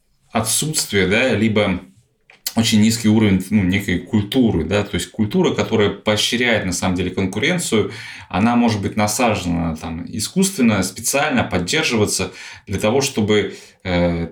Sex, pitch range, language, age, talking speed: male, 95-120 Hz, Russian, 20-39, 130 wpm